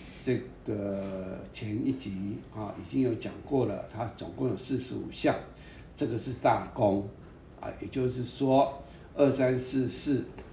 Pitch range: 120-145 Hz